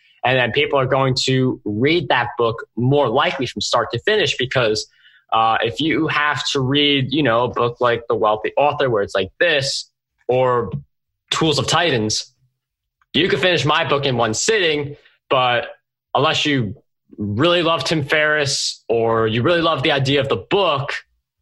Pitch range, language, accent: 120-145 Hz, English, American